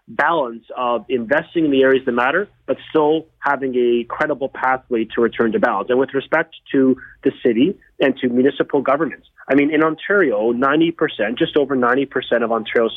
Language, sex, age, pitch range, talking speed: English, male, 30-49, 135-180 Hz, 175 wpm